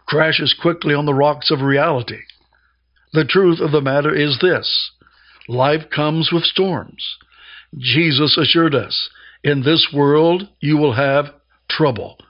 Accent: American